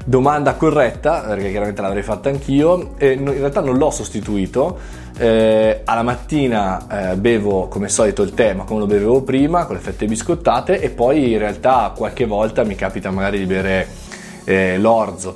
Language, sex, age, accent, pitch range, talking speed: Italian, male, 20-39, native, 95-125 Hz, 155 wpm